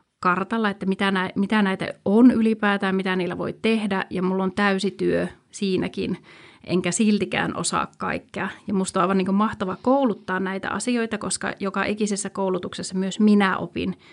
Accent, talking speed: native, 155 wpm